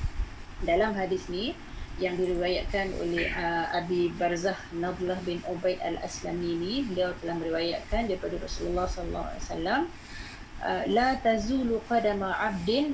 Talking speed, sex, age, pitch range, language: 125 wpm, female, 30-49, 180-230 Hz, Malay